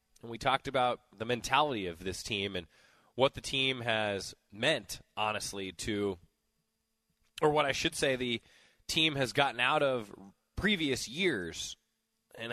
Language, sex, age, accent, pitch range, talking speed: English, male, 20-39, American, 105-140 Hz, 150 wpm